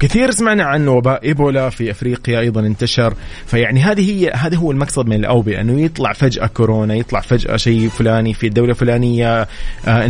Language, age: Arabic, 30-49